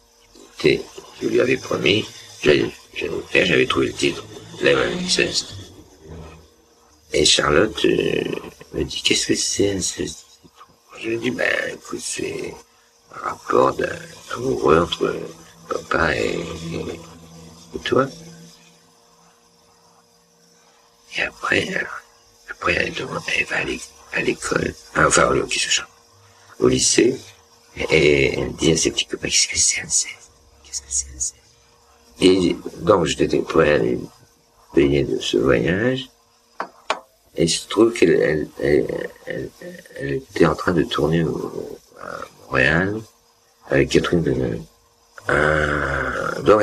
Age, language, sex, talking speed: 60-79, French, male, 125 wpm